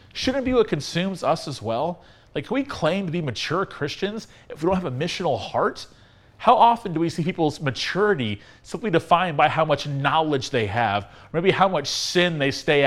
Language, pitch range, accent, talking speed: English, 140-190 Hz, American, 210 wpm